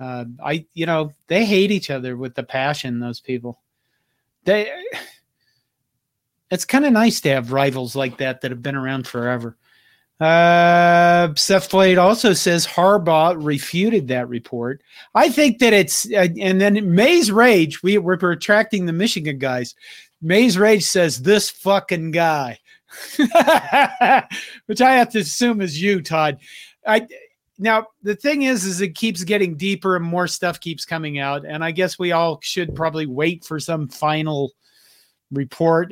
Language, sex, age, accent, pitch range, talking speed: English, male, 50-69, American, 140-190 Hz, 160 wpm